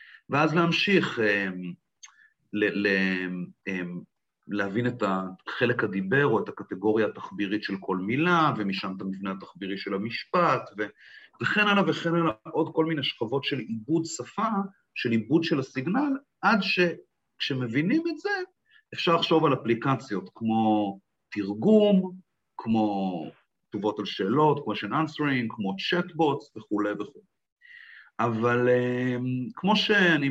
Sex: male